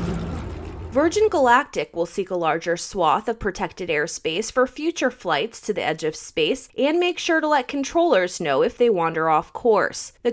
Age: 20-39